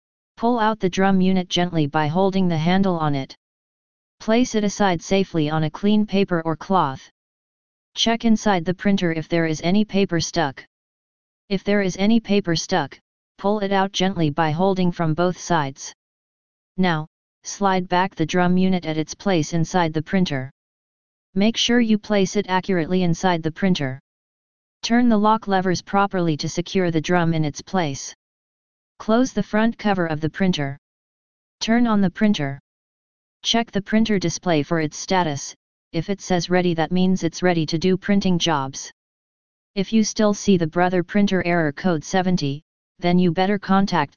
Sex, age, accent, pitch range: female, 30-49, American, 165-195 Hz